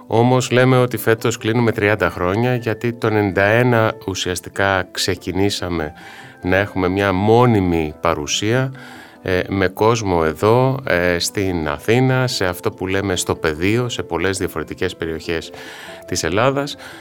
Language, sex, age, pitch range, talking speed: Greek, male, 30-49, 90-125 Hz, 120 wpm